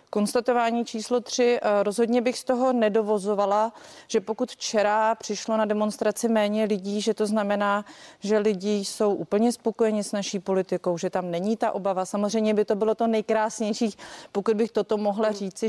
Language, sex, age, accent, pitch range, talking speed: Czech, female, 30-49, native, 185-225 Hz, 165 wpm